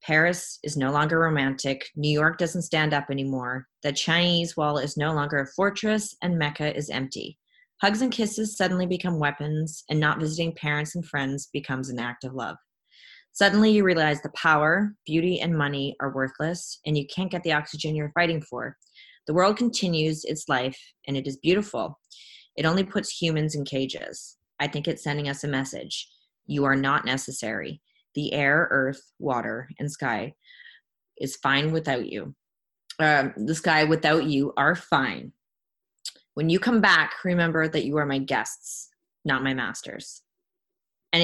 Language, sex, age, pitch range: English, female, 30-49, 145-175 Hz